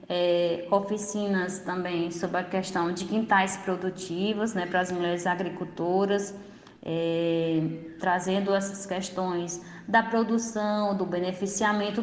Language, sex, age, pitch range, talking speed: Portuguese, female, 20-39, 180-210 Hz, 100 wpm